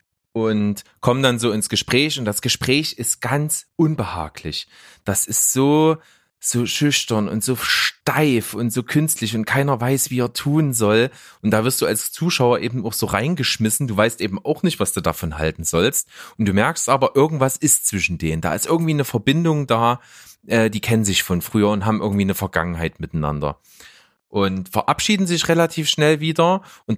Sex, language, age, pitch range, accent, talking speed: male, German, 30-49, 100-145 Hz, German, 185 wpm